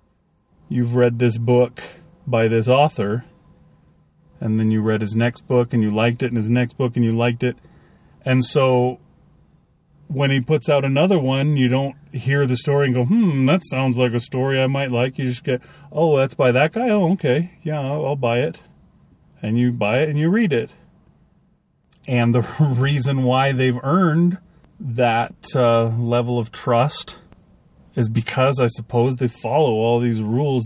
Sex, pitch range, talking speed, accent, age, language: male, 115-140 Hz, 180 wpm, American, 40-59, English